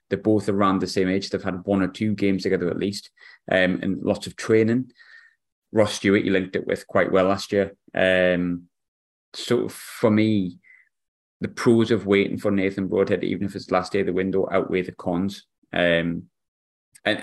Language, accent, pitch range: English, British, 90-105 Hz